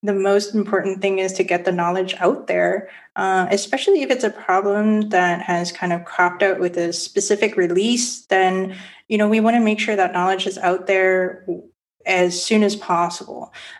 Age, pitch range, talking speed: 20-39, 175-215 Hz, 190 wpm